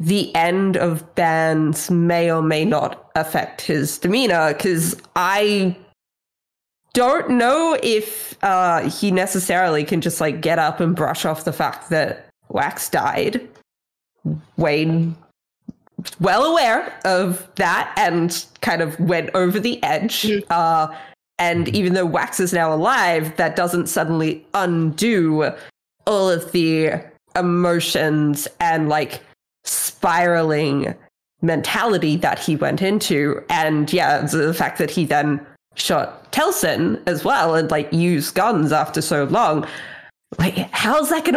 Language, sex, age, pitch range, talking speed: English, female, 20-39, 160-195 Hz, 135 wpm